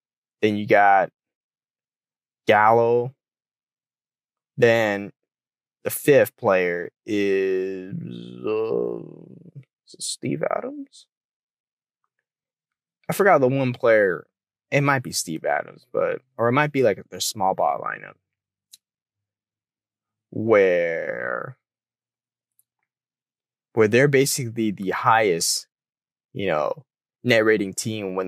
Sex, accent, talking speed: male, American, 100 wpm